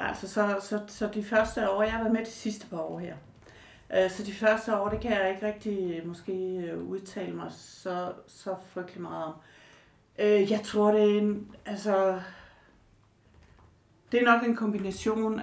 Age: 60-79